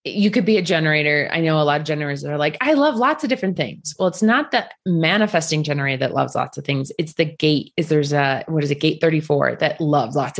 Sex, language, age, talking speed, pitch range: female, English, 20-39, 260 wpm, 155-205 Hz